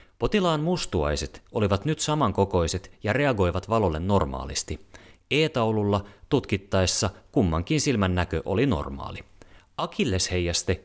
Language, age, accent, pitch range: Finnish, 30-49, native, 90-115 Hz